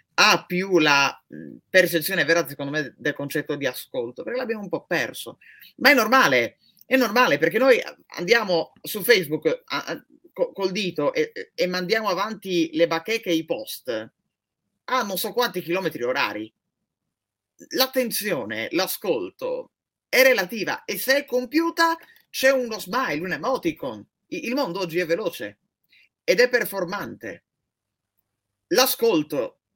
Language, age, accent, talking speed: Italian, 30-49, native, 135 wpm